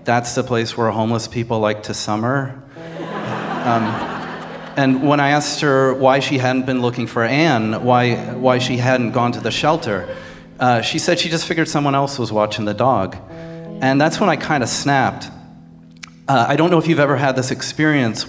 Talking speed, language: 195 wpm, English